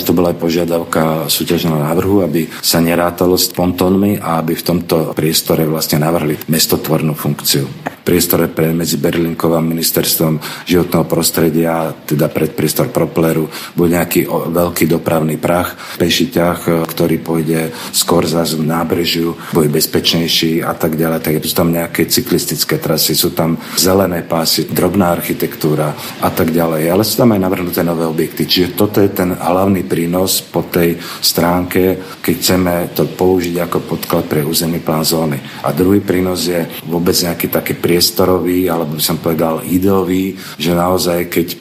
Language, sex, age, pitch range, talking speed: Slovak, male, 50-69, 80-90 Hz, 150 wpm